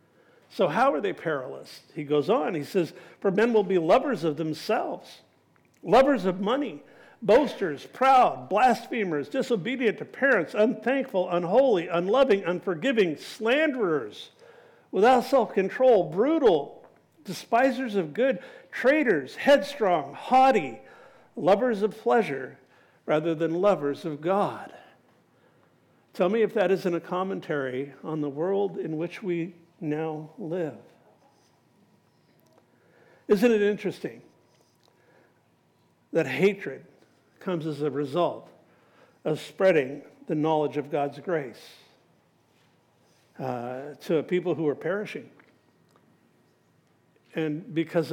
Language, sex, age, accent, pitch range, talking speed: English, male, 50-69, American, 160-225 Hz, 110 wpm